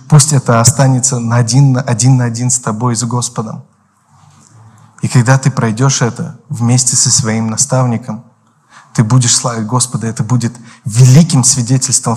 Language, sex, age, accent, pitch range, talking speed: Russian, male, 20-39, native, 115-155 Hz, 140 wpm